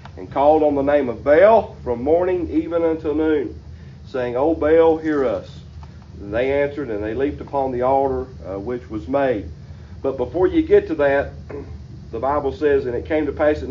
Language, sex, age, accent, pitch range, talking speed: English, male, 40-59, American, 110-150 Hz, 195 wpm